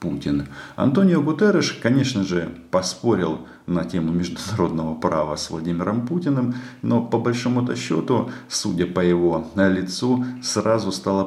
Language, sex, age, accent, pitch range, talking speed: Russian, male, 50-69, native, 80-110 Hz, 120 wpm